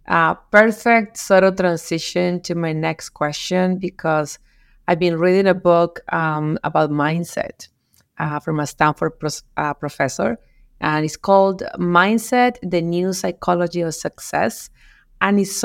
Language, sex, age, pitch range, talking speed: English, female, 30-49, 160-195 Hz, 135 wpm